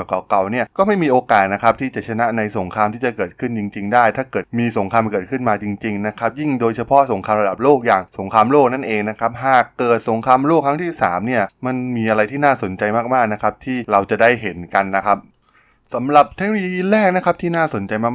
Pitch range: 105-130 Hz